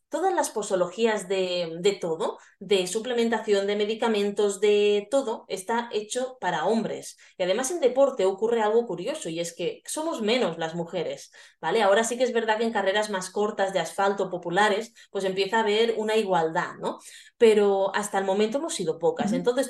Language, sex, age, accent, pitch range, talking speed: Spanish, female, 20-39, Spanish, 185-260 Hz, 180 wpm